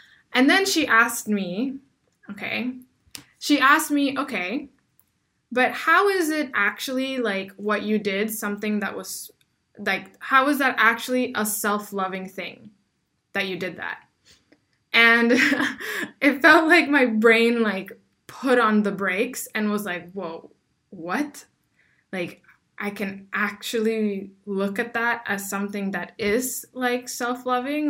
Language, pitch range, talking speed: English, 205-255 Hz, 135 wpm